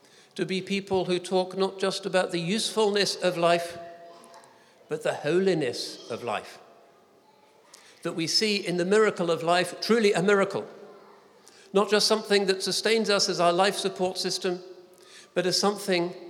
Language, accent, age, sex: English, British, 50-69, male